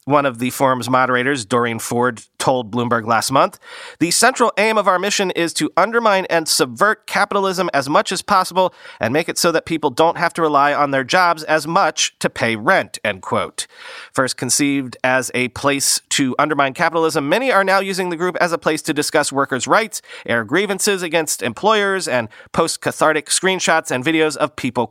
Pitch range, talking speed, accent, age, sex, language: 140-185 Hz, 190 wpm, American, 30-49, male, English